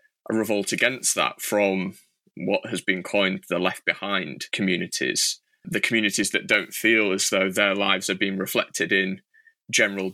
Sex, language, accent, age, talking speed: male, English, British, 20-39, 155 wpm